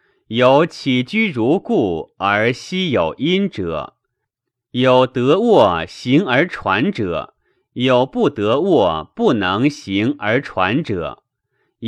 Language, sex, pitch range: Chinese, male, 95-140 Hz